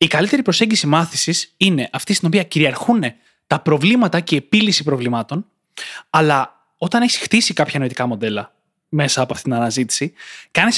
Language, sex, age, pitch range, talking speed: Greek, male, 20-39, 150-205 Hz, 155 wpm